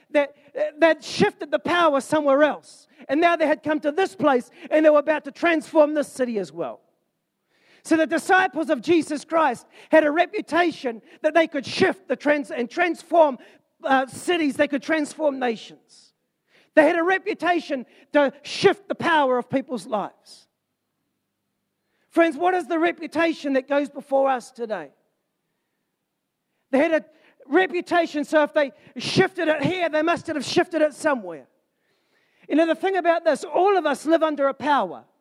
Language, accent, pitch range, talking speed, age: English, Australian, 270-325 Hz, 165 wpm, 40-59